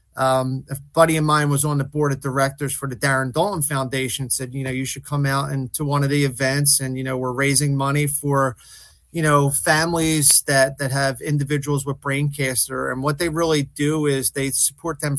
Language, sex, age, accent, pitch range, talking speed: English, male, 30-49, American, 130-145 Hz, 215 wpm